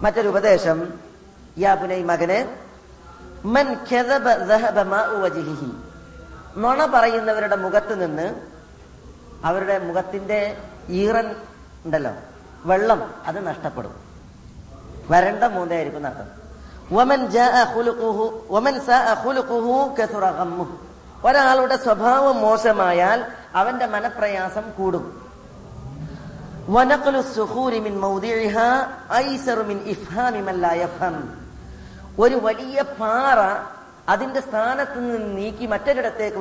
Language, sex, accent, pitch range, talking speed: Malayalam, female, native, 170-235 Hz, 40 wpm